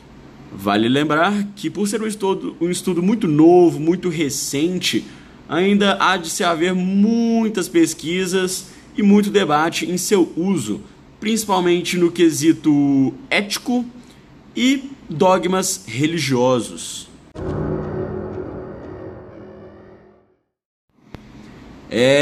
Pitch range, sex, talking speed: 160-215 Hz, male, 90 wpm